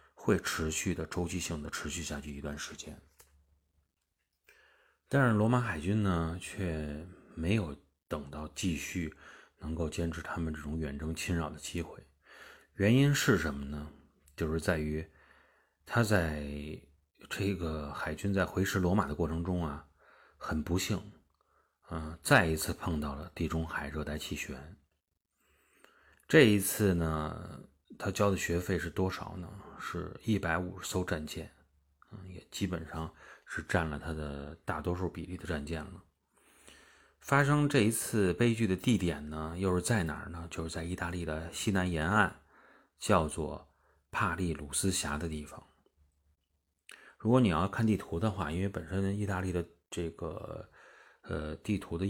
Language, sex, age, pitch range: Chinese, male, 30-49, 75-95 Hz